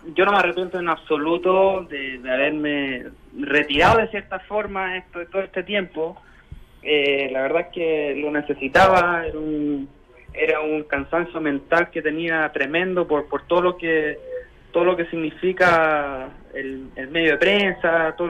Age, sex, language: 30-49, male, Spanish